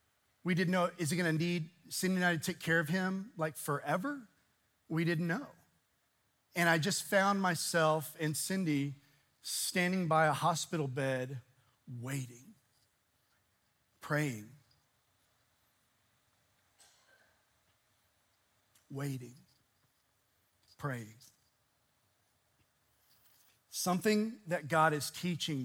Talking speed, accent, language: 95 wpm, American, English